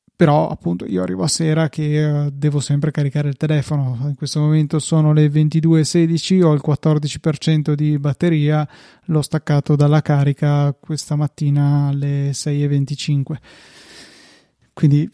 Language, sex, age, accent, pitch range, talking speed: Italian, male, 20-39, native, 145-155 Hz, 125 wpm